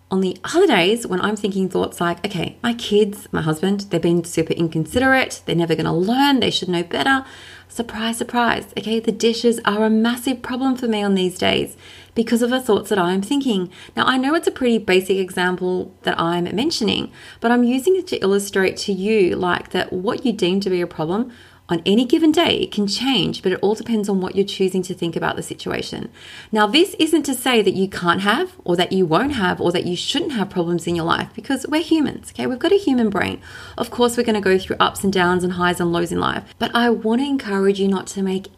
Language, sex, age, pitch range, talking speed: English, female, 30-49, 180-230 Hz, 240 wpm